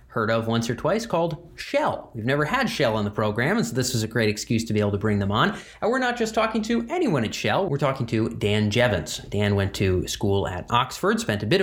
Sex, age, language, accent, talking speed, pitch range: male, 30-49, English, American, 265 wpm, 105-150 Hz